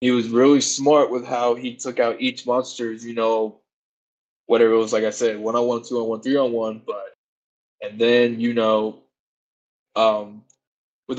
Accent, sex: American, male